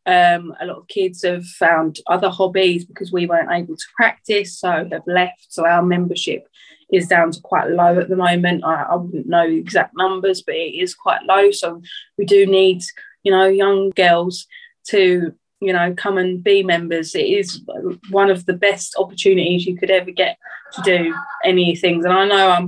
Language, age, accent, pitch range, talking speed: English, 20-39, British, 175-200 Hz, 200 wpm